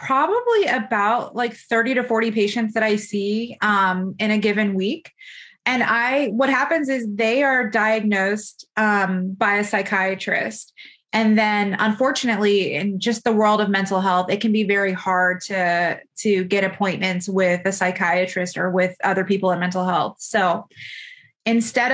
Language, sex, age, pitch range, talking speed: English, female, 20-39, 195-230 Hz, 160 wpm